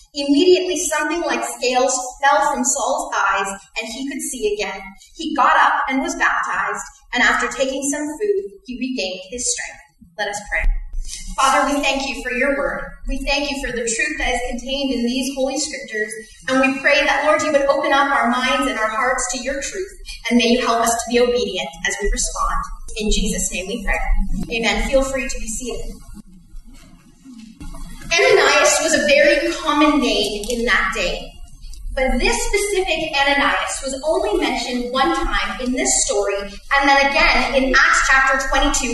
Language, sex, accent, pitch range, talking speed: English, female, American, 245-295 Hz, 180 wpm